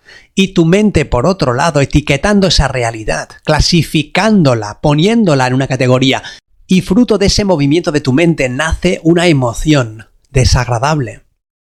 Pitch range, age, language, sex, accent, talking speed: 125-170 Hz, 30-49, Spanish, male, Spanish, 135 wpm